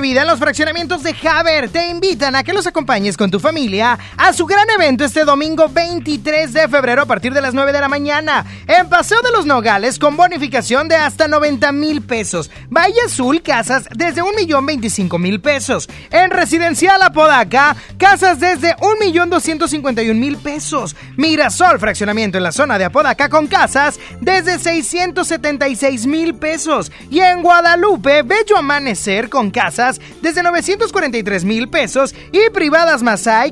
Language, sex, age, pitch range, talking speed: Spanish, male, 30-49, 255-345 Hz, 155 wpm